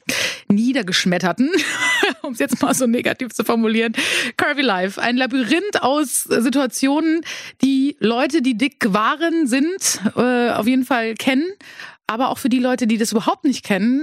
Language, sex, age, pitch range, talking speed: German, female, 30-49, 225-275 Hz, 155 wpm